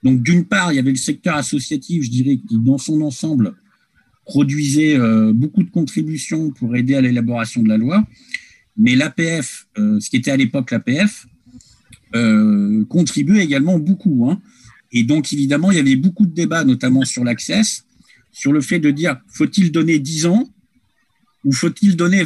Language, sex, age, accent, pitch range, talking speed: French, male, 50-69, French, 125-185 Hz, 170 wpm